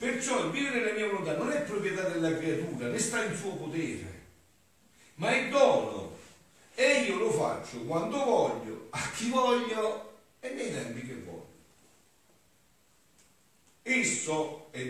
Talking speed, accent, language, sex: 140 wpm, native, Italian, male